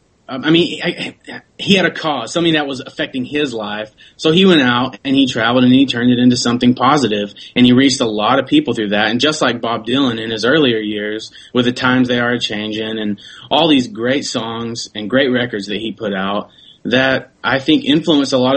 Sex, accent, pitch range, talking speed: male, American, 115-135 Hz, 230 wpm